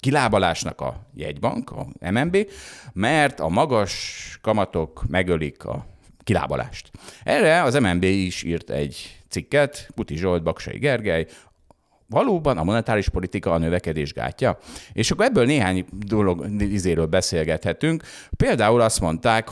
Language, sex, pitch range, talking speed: Hungarian, male, 90-115 Hz, 125 wpm